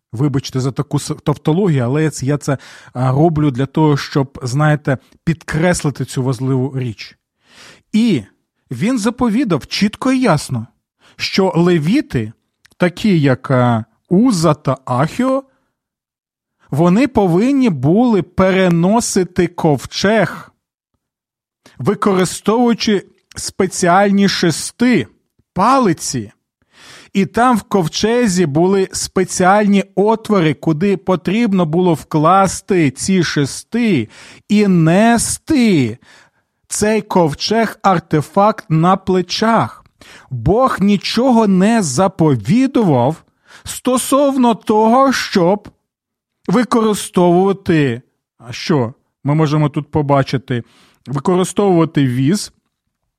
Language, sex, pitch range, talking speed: Ukrainian, male, 150-210 Hz, 80 wpm